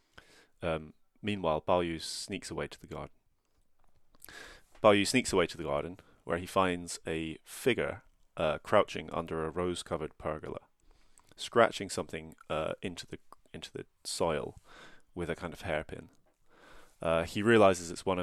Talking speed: 150 wpm